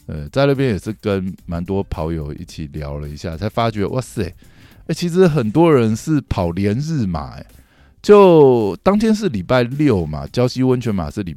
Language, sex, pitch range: Chinese, male, 100-160 Hz